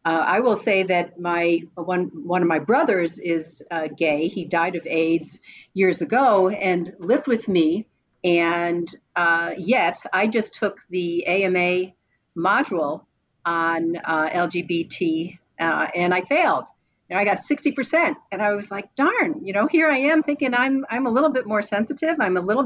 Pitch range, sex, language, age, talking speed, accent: 170-230 Hz, female, English, 50-69, 175 wpm, American